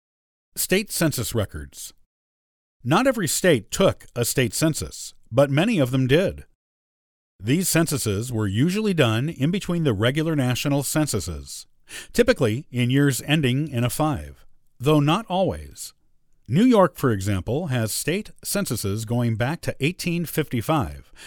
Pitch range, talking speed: 110-150 Hz, 135 wpm